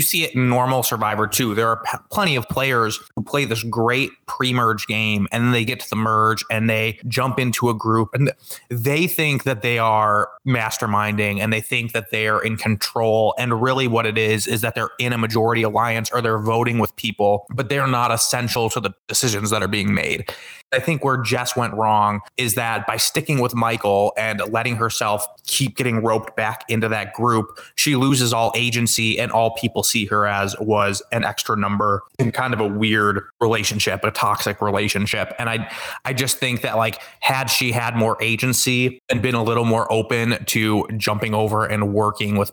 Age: 20-39